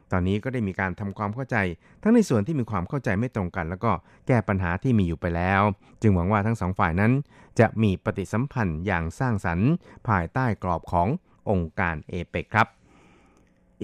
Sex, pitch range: male, 90-110 Hz